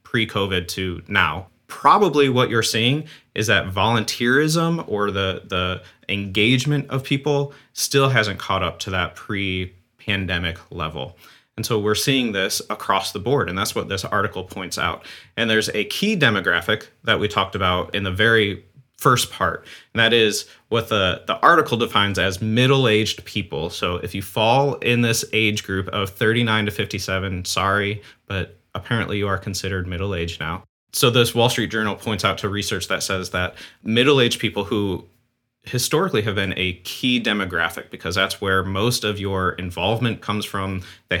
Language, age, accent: English, 30-49, American